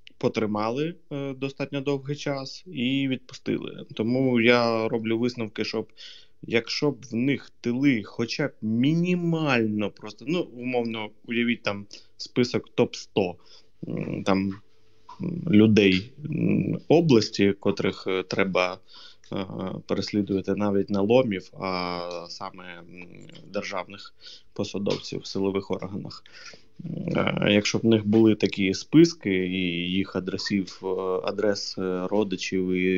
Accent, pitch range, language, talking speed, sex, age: native, 95-120 Hz, Ukrainian, 105 wpm, male, 20-39